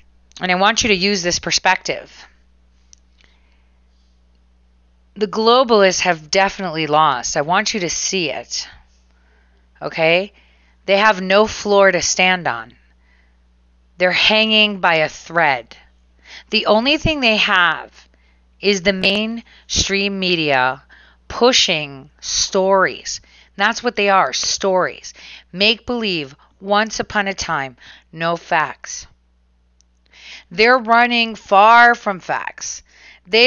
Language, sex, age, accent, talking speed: English, female, 30-49, American, 115 wpm